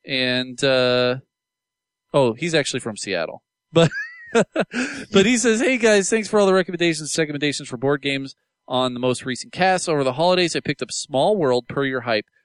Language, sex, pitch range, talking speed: English, male, 125-175 Hz, 190 wpm